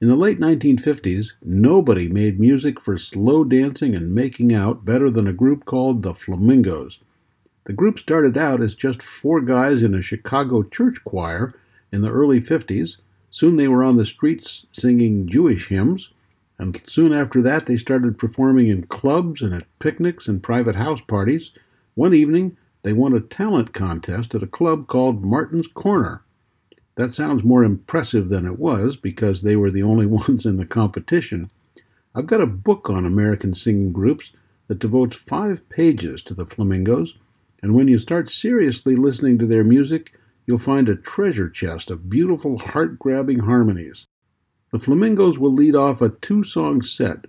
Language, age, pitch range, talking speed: English, 60-79, 105-140 Hz, 165 wpm